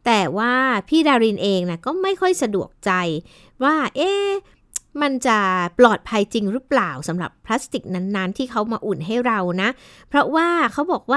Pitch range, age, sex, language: 200-275 Hz, 60-79, female, Thai